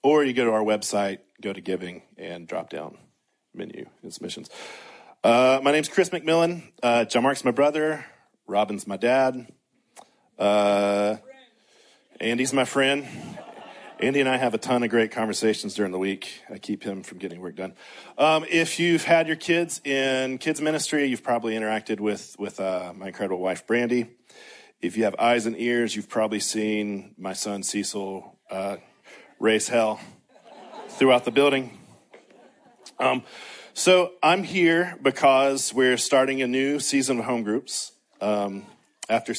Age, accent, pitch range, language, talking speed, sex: 40-59, American, 105-140 Hz, English, 155 wpm, male